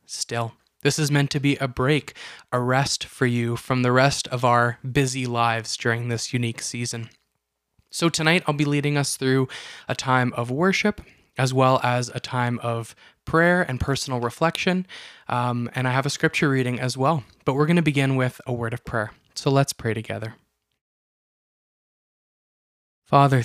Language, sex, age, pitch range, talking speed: English, male, 20-39, 120-145 Hz, 175 wpm